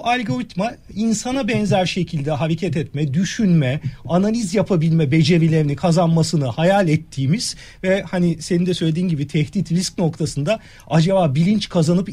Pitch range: 160-210 Hz